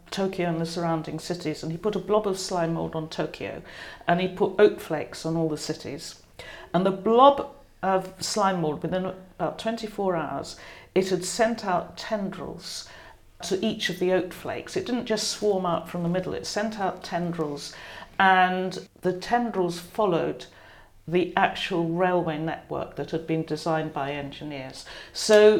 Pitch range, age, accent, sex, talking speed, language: 160-190 Hz, 50-69, British, female, 170 wpm, English